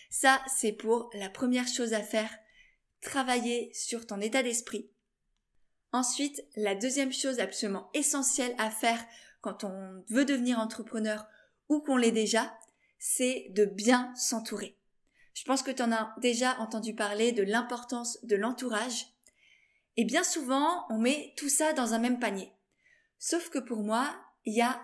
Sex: female